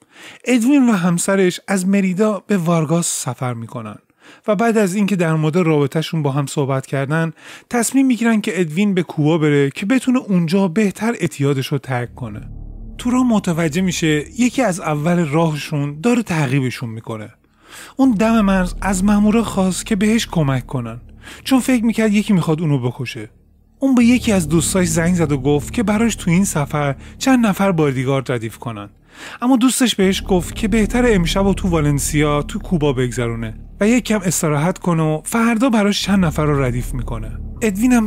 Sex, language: male, Persian